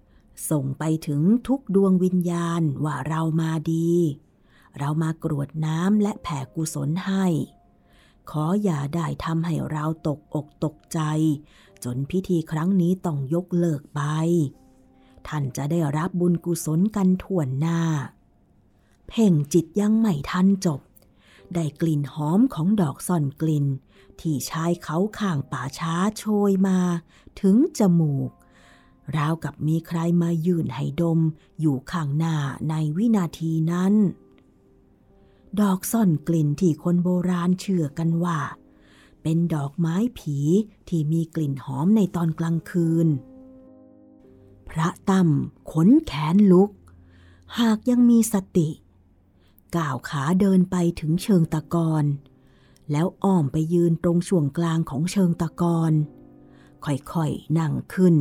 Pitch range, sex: 150-180 Hz, female